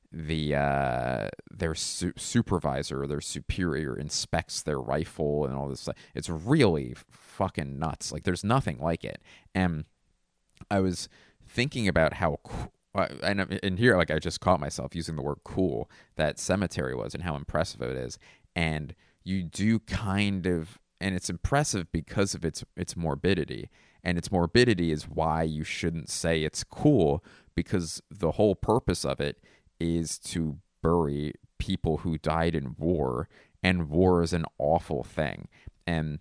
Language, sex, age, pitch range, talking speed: English, male, 30-49, 75-95 Hz, 160 wpm